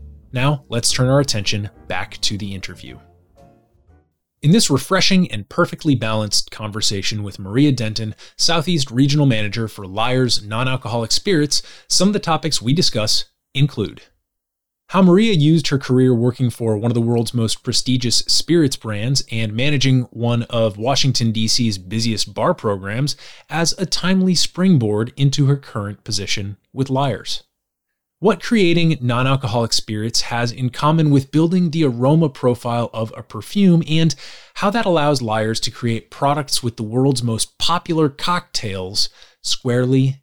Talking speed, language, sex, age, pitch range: 145 wpm, English, male, 20-39, 110-145 Hz